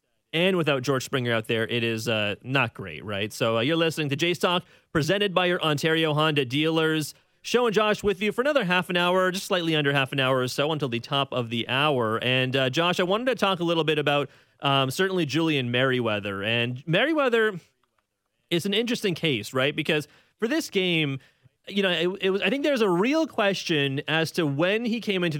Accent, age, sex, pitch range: American, 30-49, male, 135-180 Hz